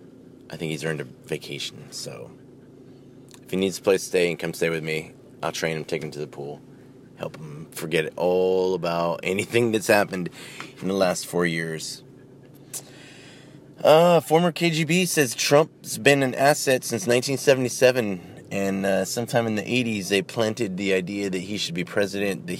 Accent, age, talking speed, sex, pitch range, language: American, 30-49, 175 wpm, male, 90-125 Hz, English